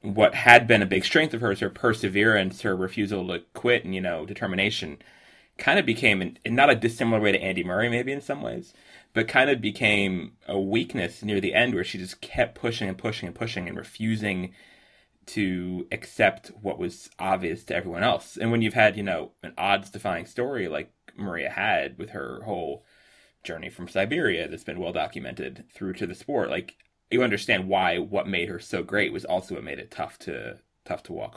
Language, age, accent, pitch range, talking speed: English, 30-49, American, 95-125 Hz, 205 wpm